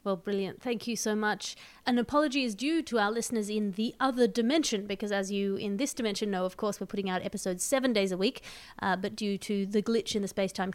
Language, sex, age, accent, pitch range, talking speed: English, female, 30-49, Australian, 190-240 Hz, 240 wpm